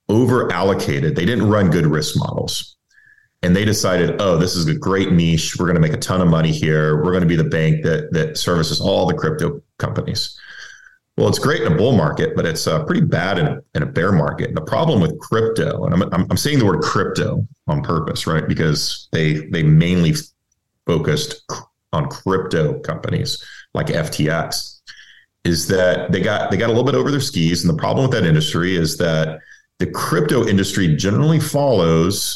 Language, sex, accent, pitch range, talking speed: English, male, American, 80-110 Hz, 195 wpm